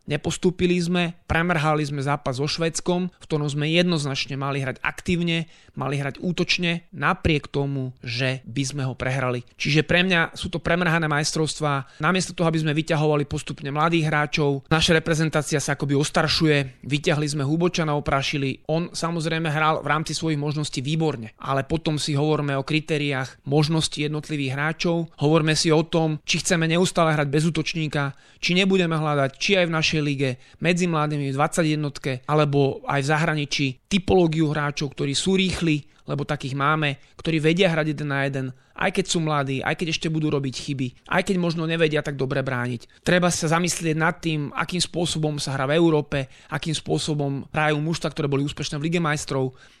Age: 30-49